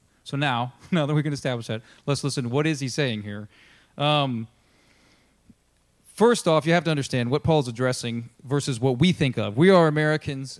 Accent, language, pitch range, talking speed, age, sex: American, English, 120-150 Hz, 185 wpm, 40-59, male